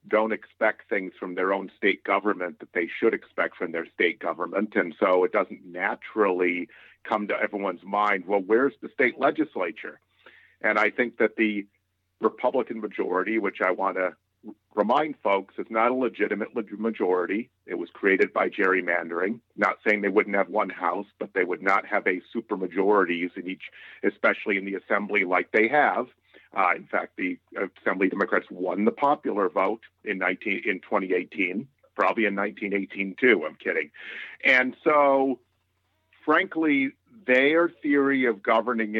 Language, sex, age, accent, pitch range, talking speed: English, male, 50-69, American, 95-115 Hz, 160 wpm